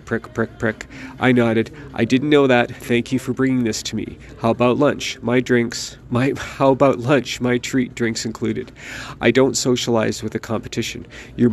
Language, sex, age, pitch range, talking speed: English, male, 40-59, 115-130 Hz, 190 wpm